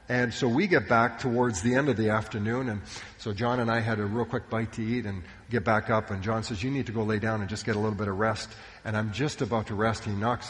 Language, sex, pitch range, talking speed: English, male, 110-145 Hz, 295 wpm